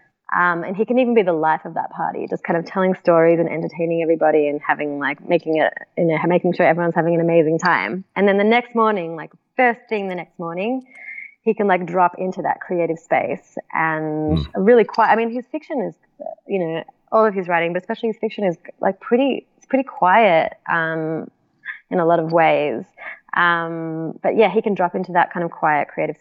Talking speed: 215 wpm